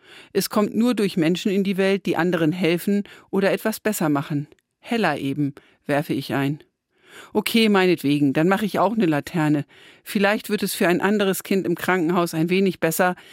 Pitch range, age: 160-200 Hz, 50-69